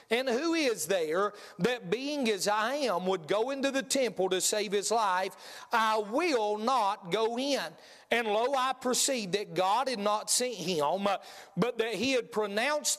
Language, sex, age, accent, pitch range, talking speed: English, male, 40-59, American, 195-250 Hz, 175 wpm